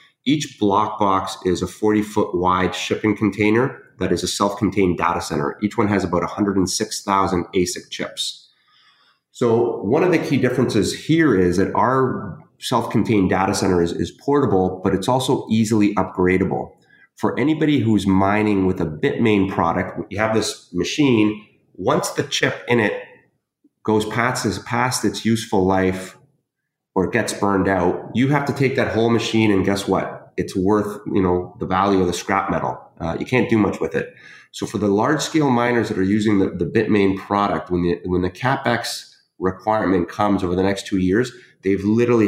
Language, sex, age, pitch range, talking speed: English, male, 30-49, 95-115 Hz, 175 wpm